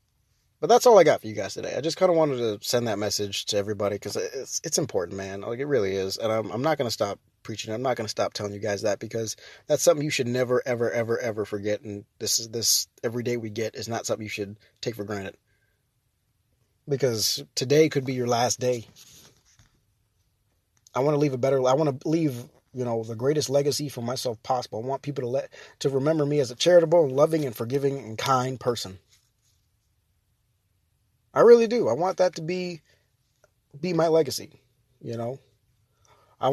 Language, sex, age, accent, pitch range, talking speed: English, male, 20-39, American, 110-145 Hz, 210 wpm